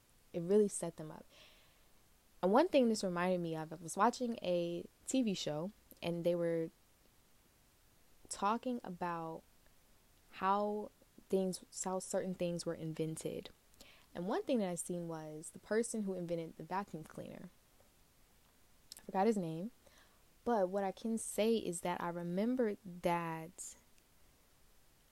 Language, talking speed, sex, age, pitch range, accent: English, 140 wpm, female, 20-39, 165-200 Hz, American